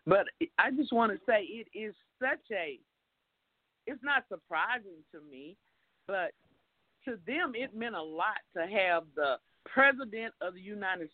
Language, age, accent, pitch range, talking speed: English, 50-69, American, 215-330 Hz, 155 wpm